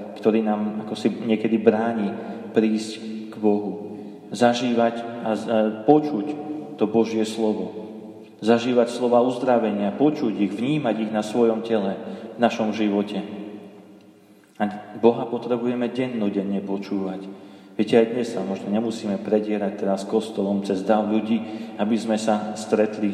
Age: 30-49